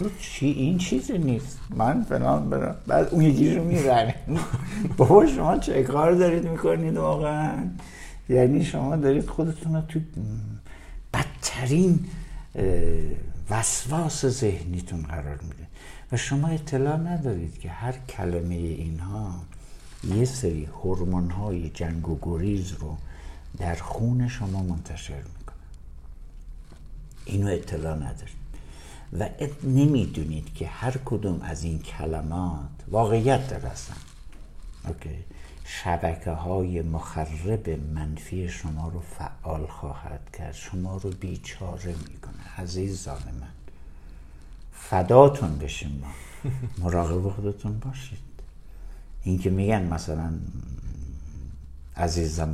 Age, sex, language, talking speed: 60-79, male, Persian, 100 wpm